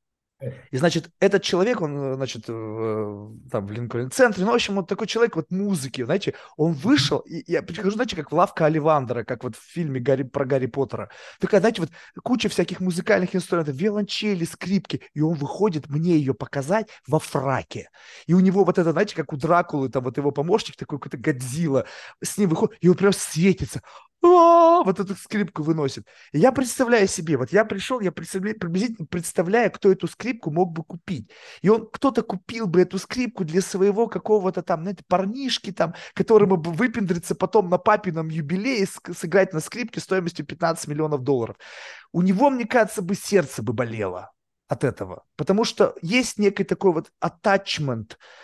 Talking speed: 175 wpm